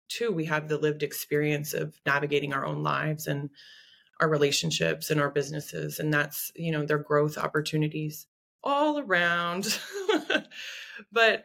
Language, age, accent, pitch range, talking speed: English, 20-39, American, 150-195 Hz, 140 wpm